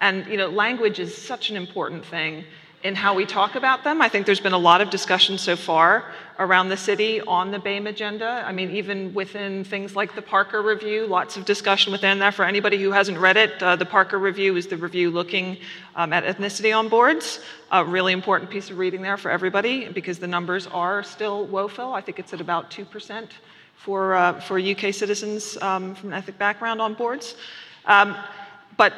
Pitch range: 185-205 Hz